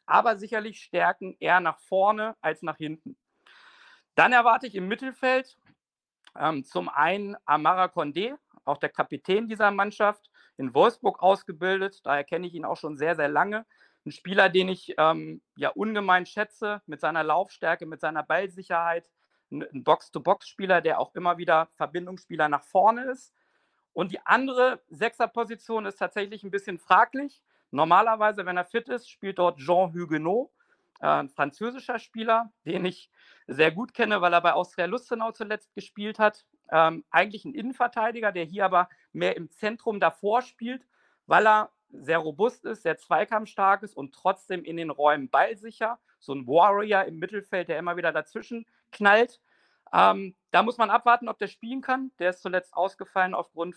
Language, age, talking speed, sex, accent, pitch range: German, 50-69, 160 wpm, male, German, 170-230 Hz